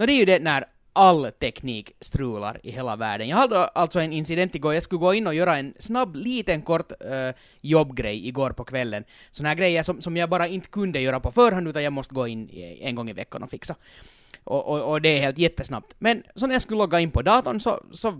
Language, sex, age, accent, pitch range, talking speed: Finnish, male, 20-39, native, 135-205 Hz, 245 wpm